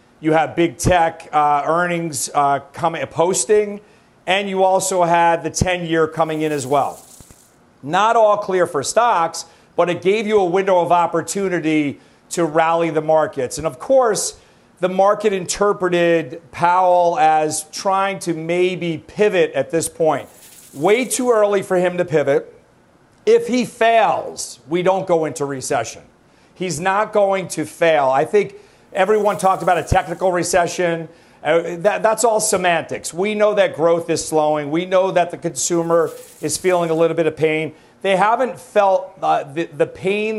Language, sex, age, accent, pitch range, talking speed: English, male, 40-59, American, 160-195 Hz, 160 wpm